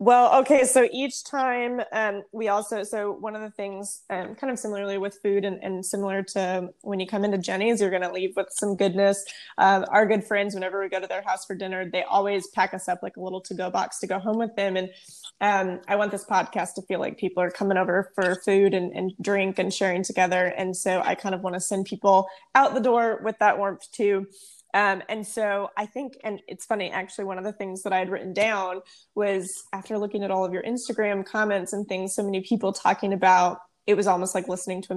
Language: English